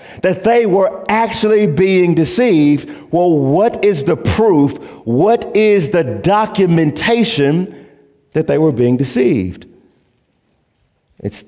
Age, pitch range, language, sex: 50-69, 95-140 Hz, English, male